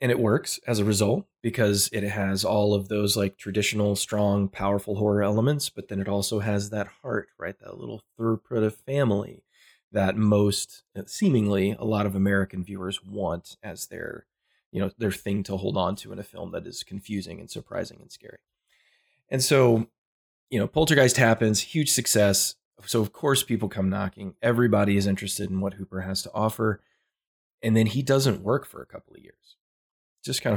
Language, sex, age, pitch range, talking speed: English, male, 20-39, 95-115 Hz, 185 wpm